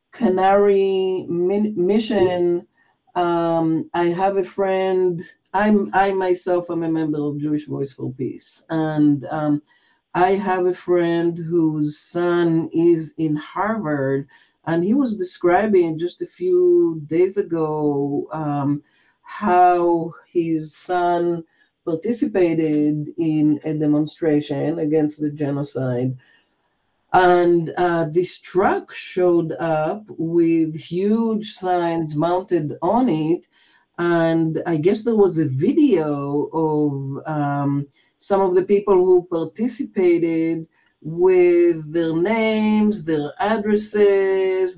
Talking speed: 110 wpm